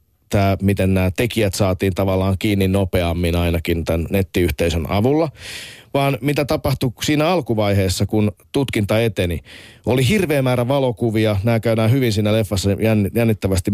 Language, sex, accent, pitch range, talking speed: Finnish, male, native, 95-125 Hz, 130 wpm